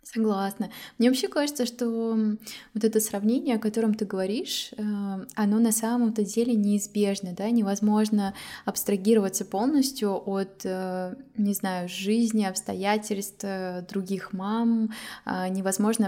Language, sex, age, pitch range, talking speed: Russian, female, 20-39, 185-225 Hz, 110 wpm